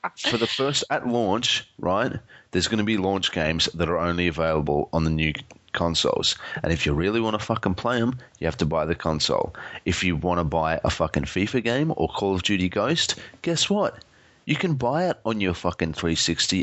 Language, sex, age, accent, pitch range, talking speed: English, male, 30-49, Australian, 80-115 Hz, 215 wpm